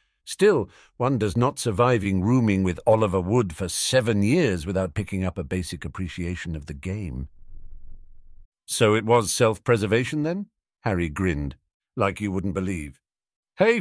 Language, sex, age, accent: English, male, 50-69, British